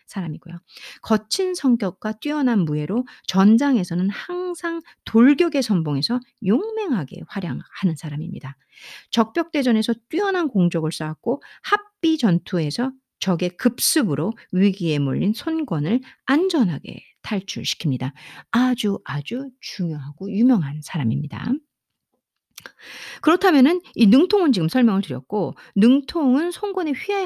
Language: Korean